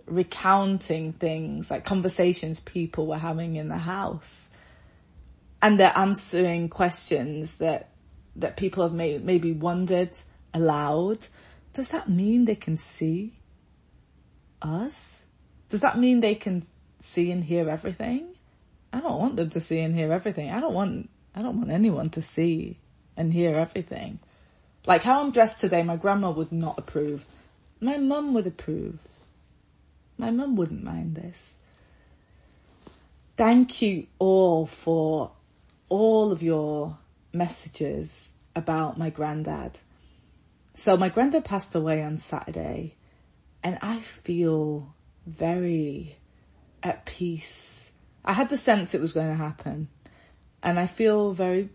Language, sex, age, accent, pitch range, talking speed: English, female, 20-39, British, 155-195 Hz, 135 wpm